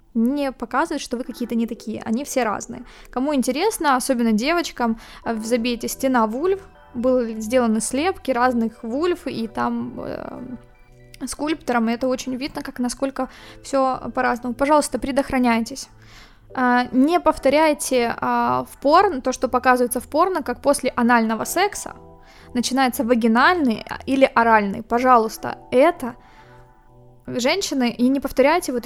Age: 20-39